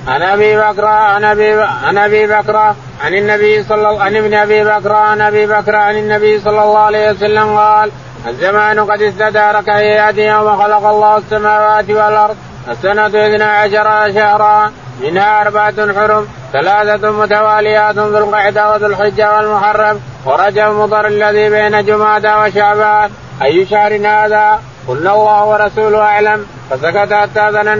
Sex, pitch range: male, 210-215 Hz